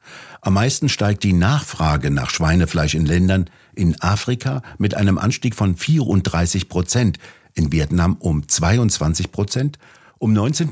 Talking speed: 135 wpm